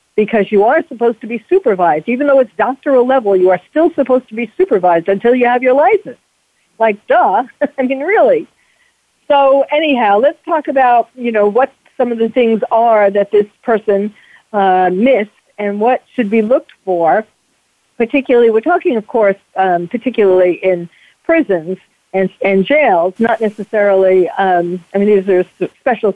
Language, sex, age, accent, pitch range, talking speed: English, female, 50-69, American, 195-260 Hz, 165 wpm